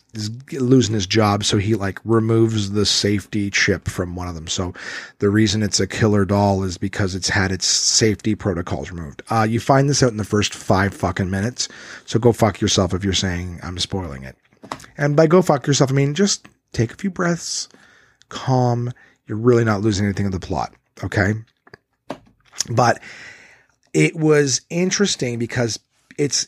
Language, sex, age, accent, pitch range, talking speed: English, male, 30-49, American, 100-140 Hz, 180 wpm